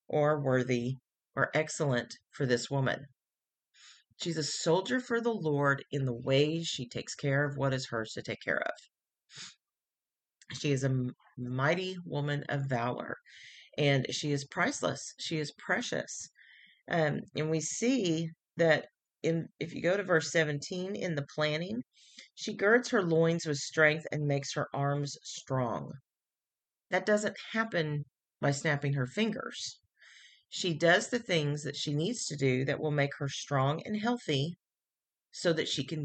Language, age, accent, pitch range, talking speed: English, 40-59, American, 140-170 Hz, 155 wpm